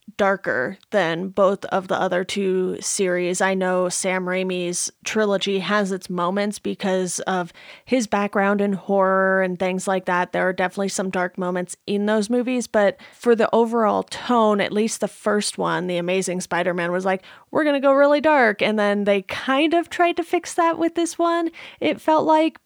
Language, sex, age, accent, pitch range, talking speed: English, female, 30-49, American, 190-230 Hz, 190 wpm